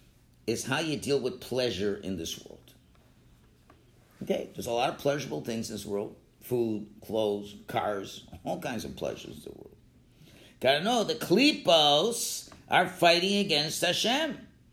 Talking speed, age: 155 wpm, 50-69